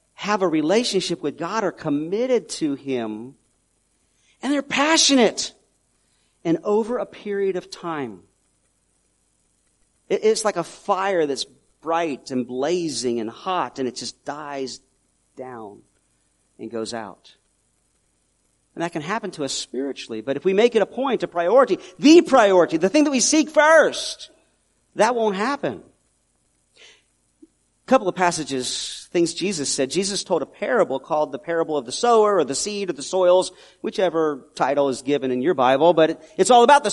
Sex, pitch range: male, 140-220 Hz